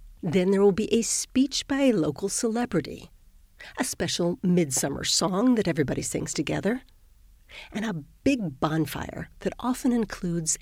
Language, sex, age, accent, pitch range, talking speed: Danish, female, 50-69, American, 160-255 Hz, 140 wpm